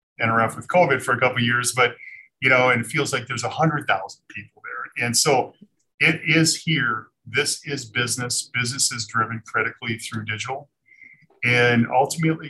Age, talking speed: 40-59, 180 wpm